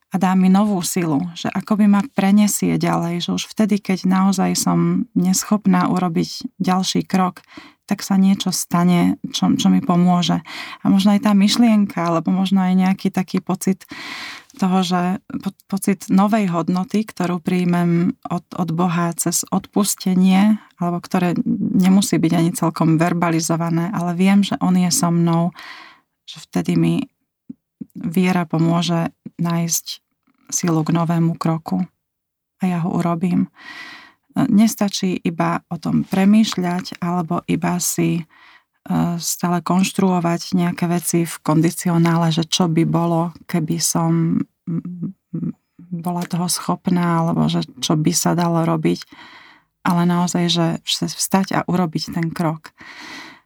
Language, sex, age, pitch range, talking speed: Slovak, female, 20-39, 170-195 Hz, 130 wpm